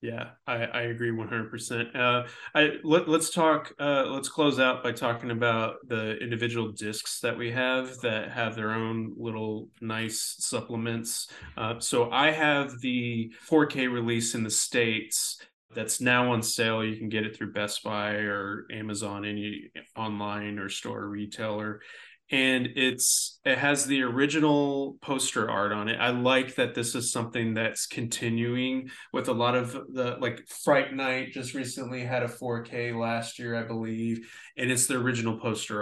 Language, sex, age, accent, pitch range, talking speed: English, male, 20-39, American, 115-125 Hz, 165 wpm